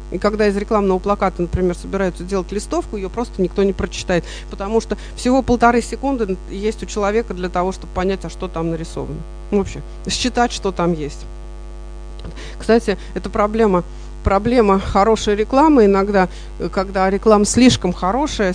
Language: Russian